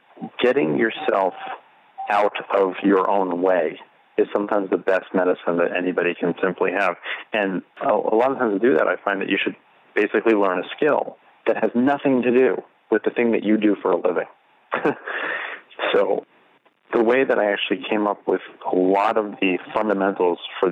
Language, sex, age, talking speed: English, male, 40-59, 185 wpm